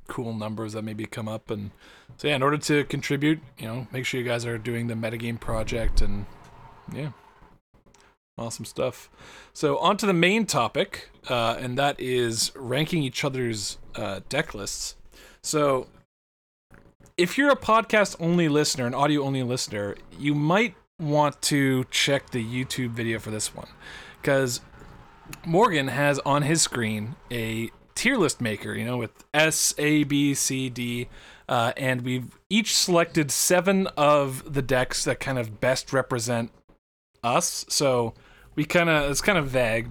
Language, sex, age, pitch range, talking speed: English, male, 20-39, 115-150 Hz, 160 wpm